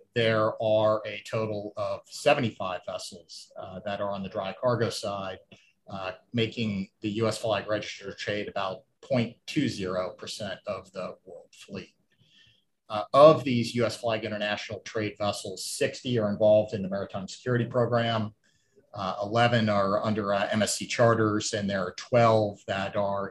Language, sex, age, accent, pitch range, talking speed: English, male, 40-59, American, 100-115 Hz, 145 wpm